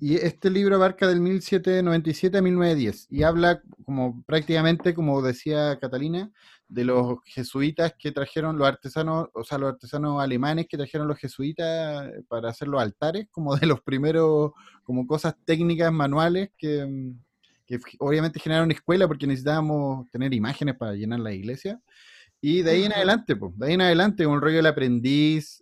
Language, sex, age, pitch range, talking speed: Spanish, male, 30-49, 125-165 Hz, 165 wpm